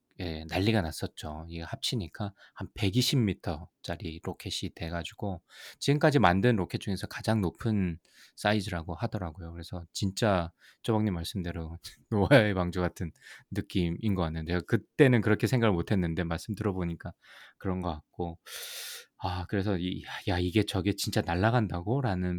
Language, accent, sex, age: Korean, native, male, 20-39